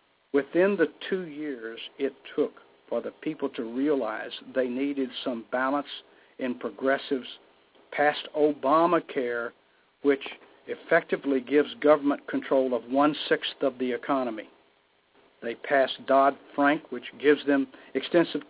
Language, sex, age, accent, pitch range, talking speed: English, male, 60-79, American, 130-150 Hz, 115 wpm